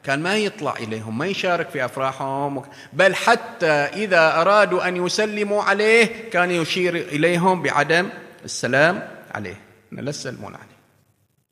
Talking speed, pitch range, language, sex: 125 wpm, 115-180 Hz, Arabic, male